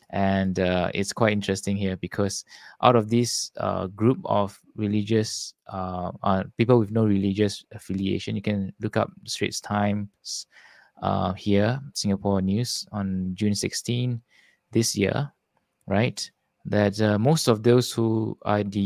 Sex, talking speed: male, 145 wpm